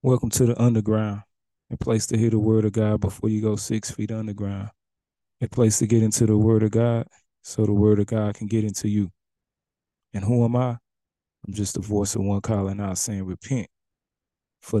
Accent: American